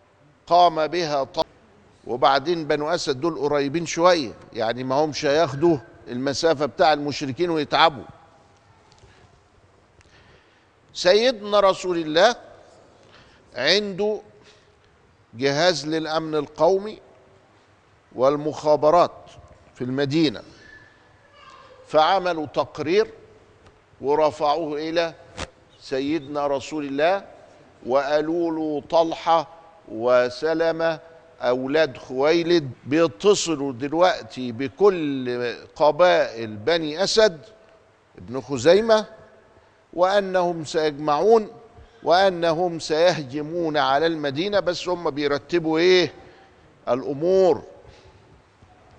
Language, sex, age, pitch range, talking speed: Arabic, male, 50-69, 135-175 Hz, 70 wpm